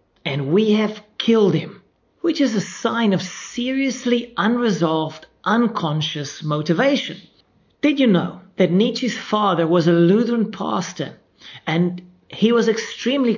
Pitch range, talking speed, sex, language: 170-220 Hz, 125 wpm, male, English